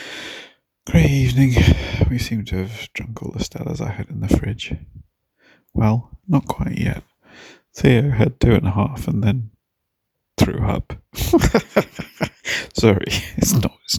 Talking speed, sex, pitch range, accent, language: 140 wpm, male, 95-125 Hz, British, English